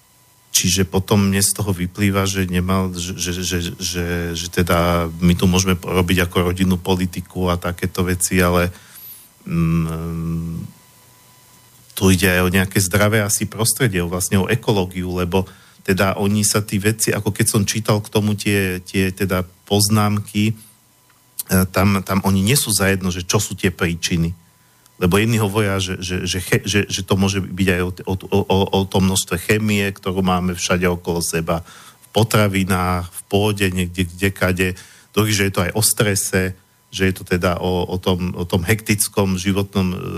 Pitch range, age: 90-105 Hz, 40-59